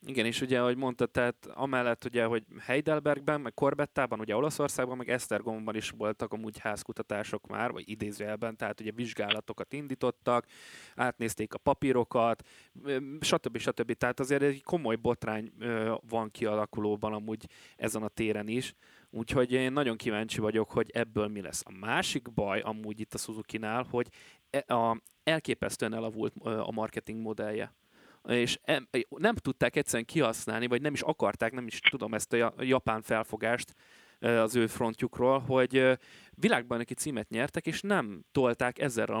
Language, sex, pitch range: Hungarian, male, 110-130 Hz